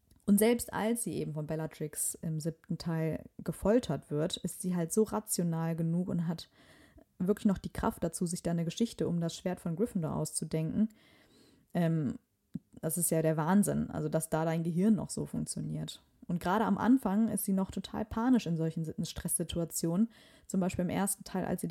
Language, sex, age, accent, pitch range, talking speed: German, female, 20-39, German, 165-205 Hz, 190 wpm